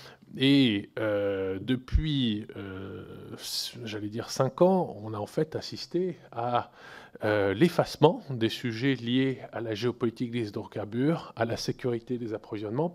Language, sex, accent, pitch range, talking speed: French, male, French, 115-140 Hz, 135 wpm